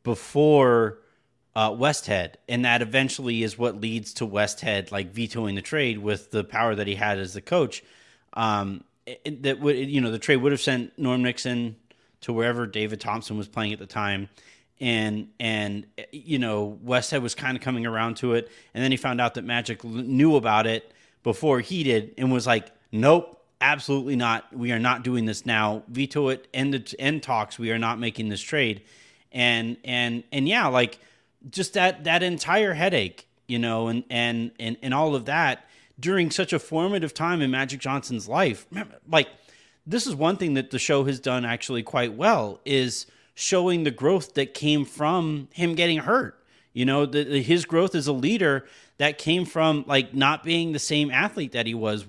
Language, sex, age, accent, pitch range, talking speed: English, male, 30-49, American, 115-145 Hz, 195 wpm